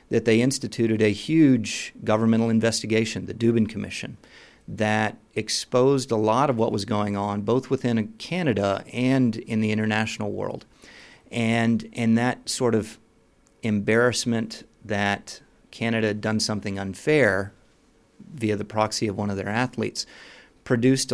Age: 40-59